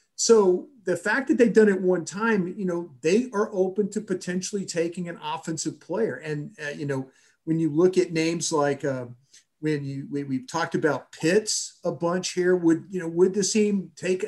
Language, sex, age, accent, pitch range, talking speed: English, male, 40-59, American, 160-195 Hz, 200 wpm